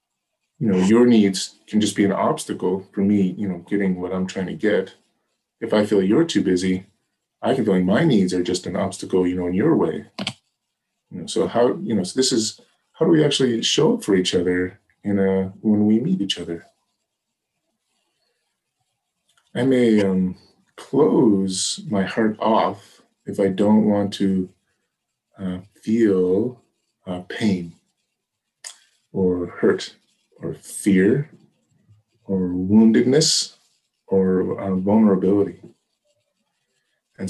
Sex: male